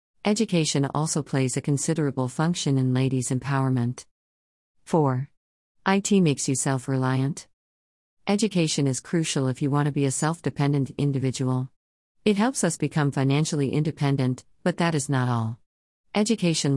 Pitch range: 130-155 Hz